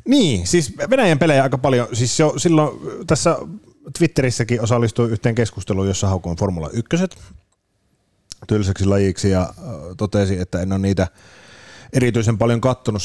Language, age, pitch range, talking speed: Finnish, 30-49, 90-120 Hz, 135 wpm